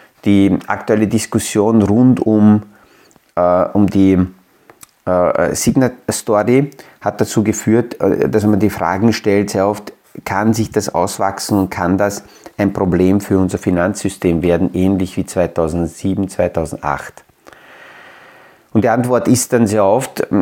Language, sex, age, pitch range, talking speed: German, male, 30-49, 95-110 Hz, 130 wpm